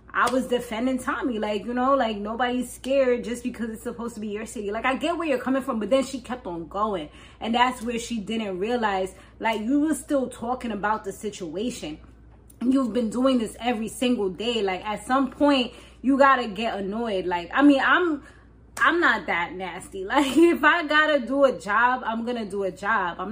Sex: female